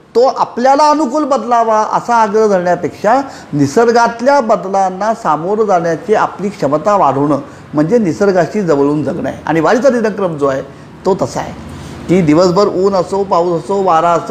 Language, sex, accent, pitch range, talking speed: Marathi, male, native, 155-220 Hz, 135 wpm